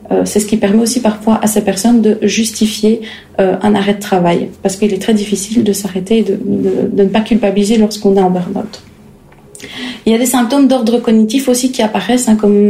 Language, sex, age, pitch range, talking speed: French, female, 30-49, 205-230 Hz, 210 wpm